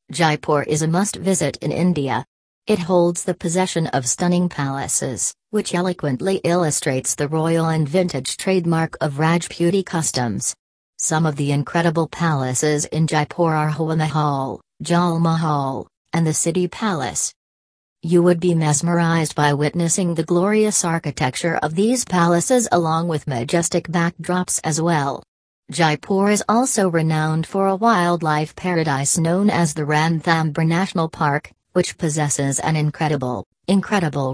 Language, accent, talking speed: English, American, 135 wpm